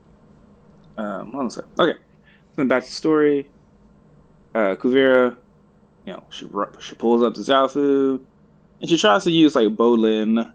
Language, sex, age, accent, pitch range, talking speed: English, male, 20-39, American, 100-140 Hz, 150 wpm